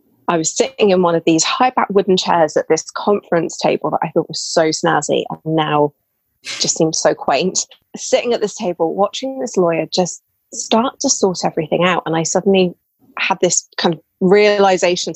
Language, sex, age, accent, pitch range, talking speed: English, female, 20-39, British, 160-195 Hz, 185 wpm